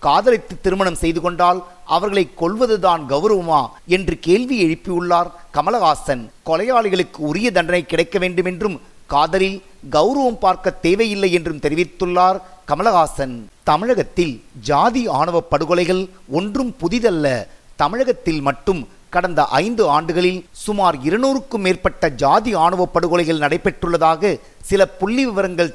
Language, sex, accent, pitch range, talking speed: Tamil, male, native, 165-195 Hz, 105 wpm